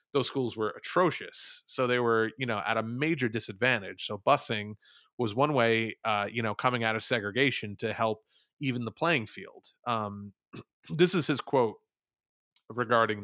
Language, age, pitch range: English, 30-49, 110-135 Hz